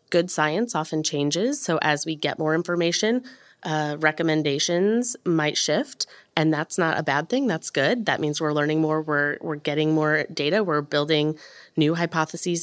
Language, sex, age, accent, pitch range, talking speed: English, female, 20-39, American, 150-165 Hz, 170 wpm